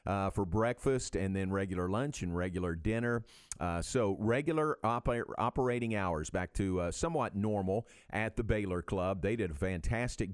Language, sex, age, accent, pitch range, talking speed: English, male, 50-69, American, 95-115 Hz, 165 wpm